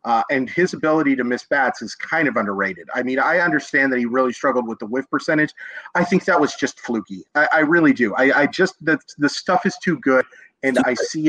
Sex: male